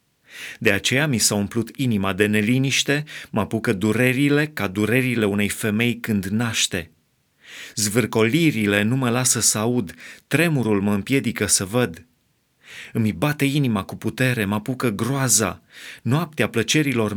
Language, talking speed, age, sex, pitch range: Romanian, 135 wpm, 30-49, male, 105-125 Hz